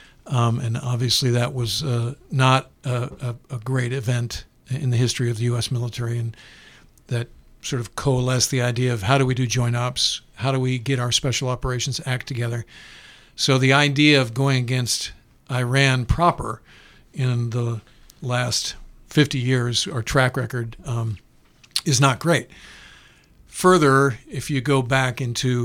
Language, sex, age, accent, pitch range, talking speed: English, male, 50-69, American, 120-135 Hz, 160 wpm